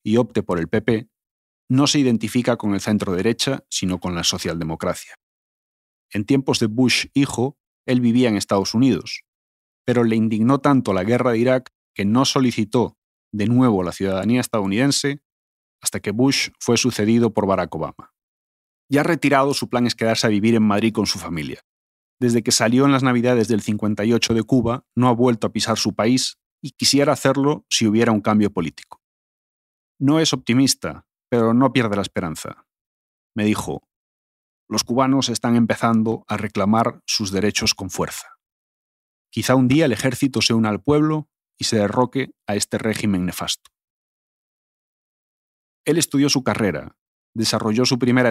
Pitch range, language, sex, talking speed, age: 105-130 Hz, Spanish, male, 165 wpm, 30-49